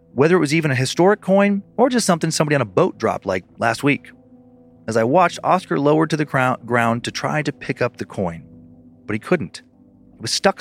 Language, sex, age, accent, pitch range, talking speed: English, male, 30-49, American, 115-165 Hz, 220 wpm